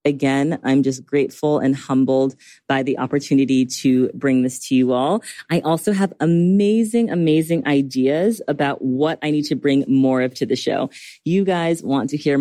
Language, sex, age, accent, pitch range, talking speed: English, female, 30-49, American, 135-180 Hz, 180 wpm